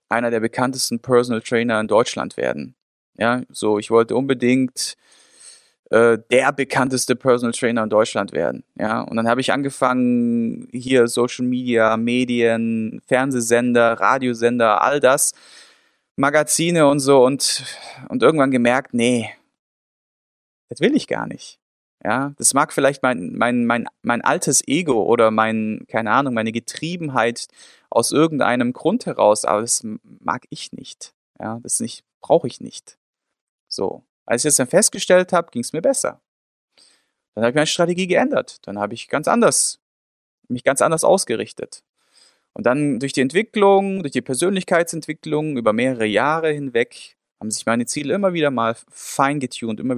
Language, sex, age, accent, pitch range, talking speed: German, male, 20-39, German, 115-150 Hz, 150 wpm